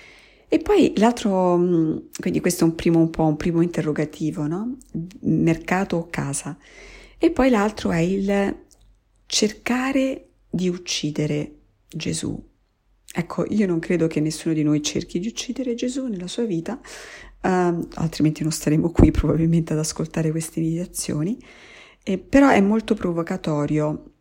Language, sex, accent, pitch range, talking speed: Italian, female, native, 155-195 Hz, 140 wpm